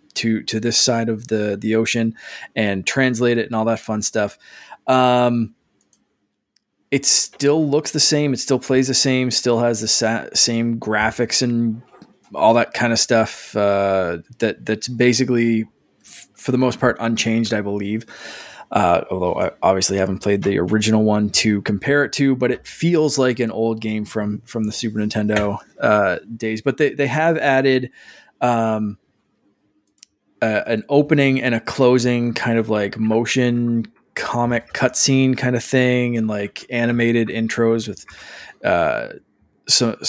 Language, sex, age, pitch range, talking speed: English, male, 20-39, 110-130 Hz, 155 wpm